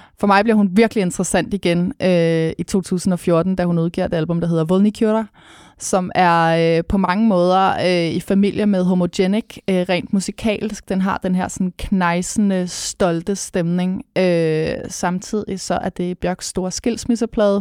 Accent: native